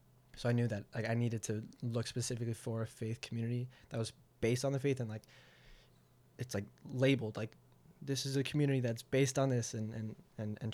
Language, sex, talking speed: English, male, 210 wpm